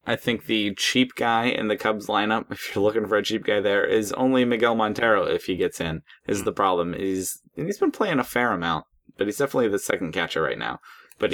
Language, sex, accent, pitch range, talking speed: English, male, American, 95-120 Hz, 240 wpm